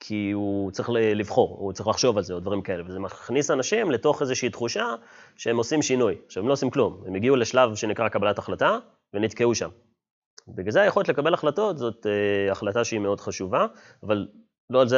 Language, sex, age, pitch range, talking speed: Hebrew, male, 30-49, 110-155 Hz, 190 wpm